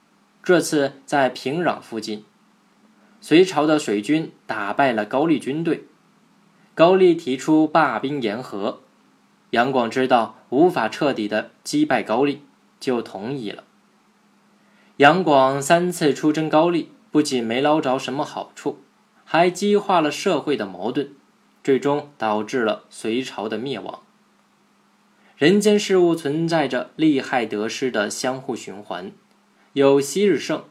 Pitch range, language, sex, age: 130-195 Hz, Chinese, male, 20-39